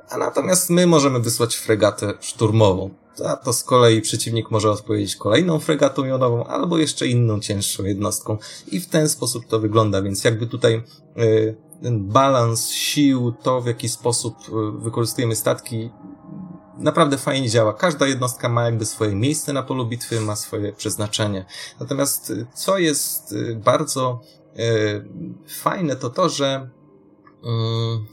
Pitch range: 105-135 Hz